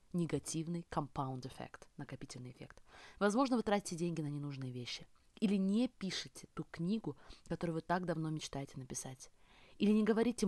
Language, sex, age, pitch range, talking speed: Russian, female, 20-39, 160-205 Hz, 150 wpm